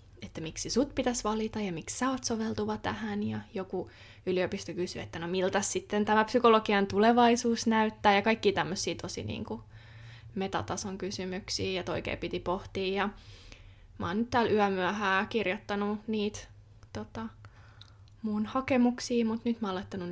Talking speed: 150 wpm